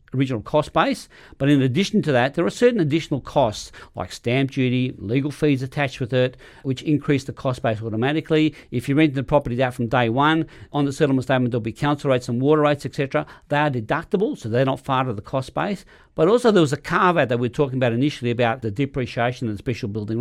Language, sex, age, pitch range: English, male, 50-69, 125-150 Hz